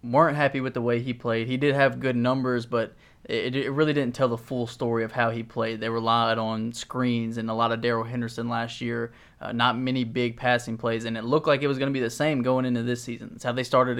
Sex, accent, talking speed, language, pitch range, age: male, American, 265 wpm, English, 115-125 Hz, 20-39